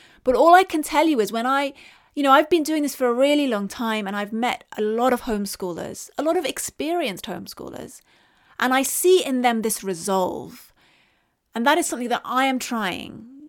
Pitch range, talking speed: 205-265 Hz, 210 wpm